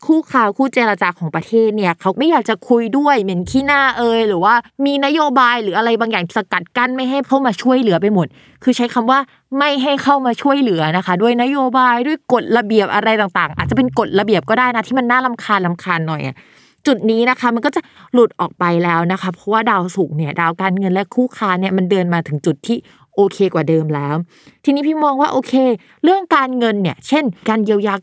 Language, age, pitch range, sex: Thai, 20-39, 190-255 Hz, female